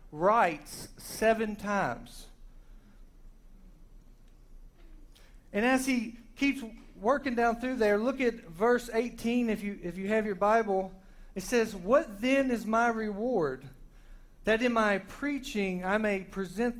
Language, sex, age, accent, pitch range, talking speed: English, male, 40-59, American, 180-235 Hz, 130 wpm